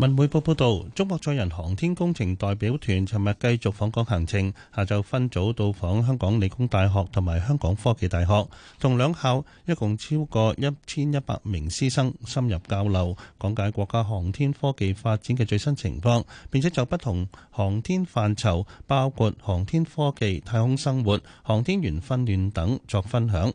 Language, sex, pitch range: Chinese, male, 95-135 Hz